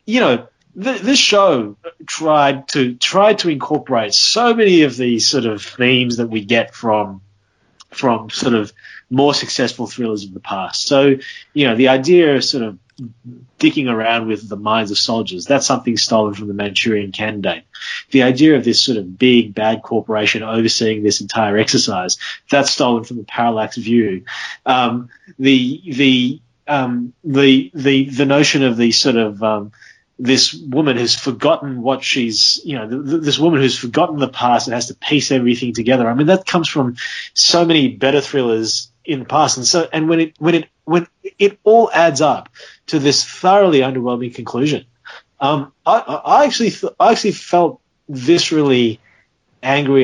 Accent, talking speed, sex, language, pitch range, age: Australian, 170 wpm, male, English, 115-150 Hz, 30-49